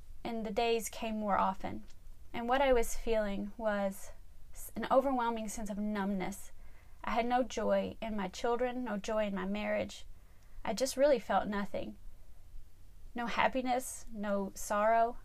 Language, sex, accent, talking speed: English, female, American, 150 wpm